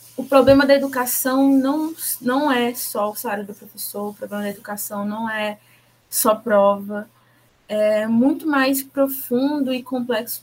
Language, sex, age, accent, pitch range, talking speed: Portuguese, female, 20-39, Brazilian, 210-270 Hz, 150 wpm